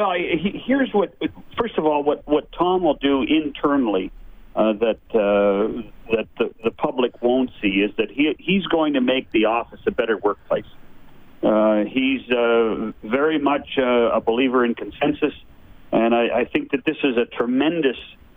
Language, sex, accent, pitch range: English, male, American, 115-145 Hz